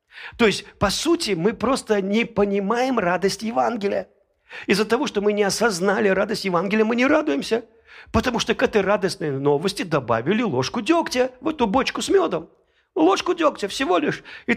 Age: 50-69